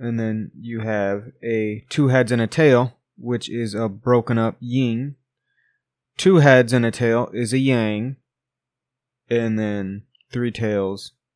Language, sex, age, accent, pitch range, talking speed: English, male, 20-39, American, 110-130 Hz, 150 wpm